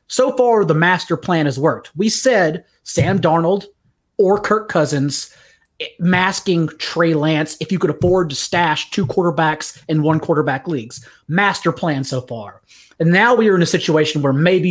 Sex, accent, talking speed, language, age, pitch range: male, American, 170 wpm, English, 30-49, 155-190 Hz